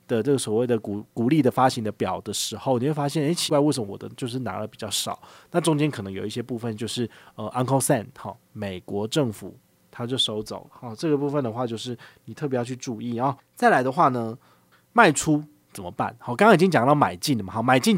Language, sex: Chinese, male